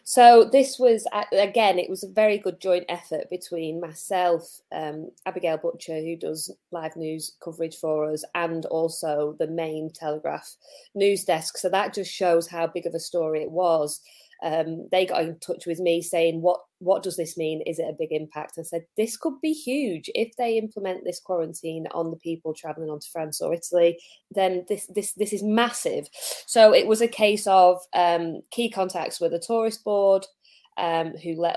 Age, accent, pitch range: 20-39, British, 160-190 Hz